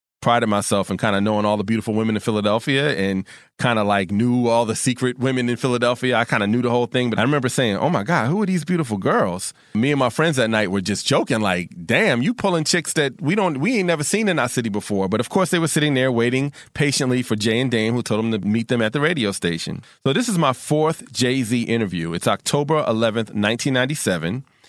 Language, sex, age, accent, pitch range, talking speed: English, male, 30-49, American, 110-135 Hz, 250 wpm